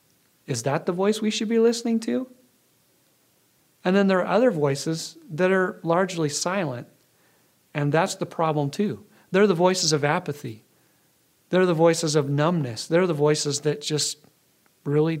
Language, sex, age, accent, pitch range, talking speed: English, male, 40-59, American, 145-175 Hz, 160 wpm